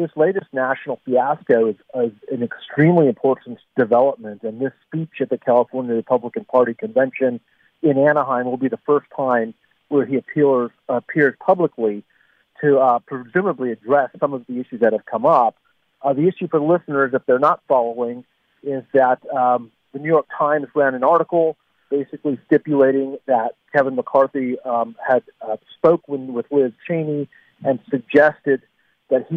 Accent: American